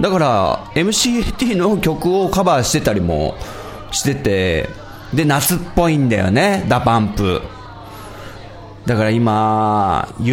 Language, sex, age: Japanese, male, 30-49